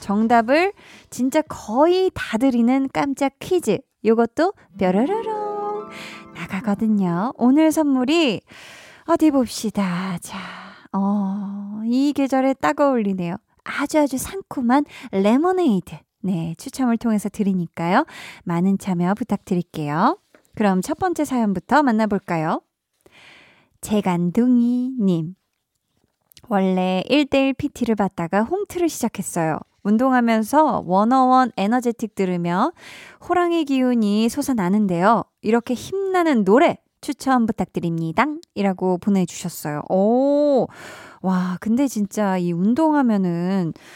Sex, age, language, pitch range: female, 20-39, Korean, 190-275 Hz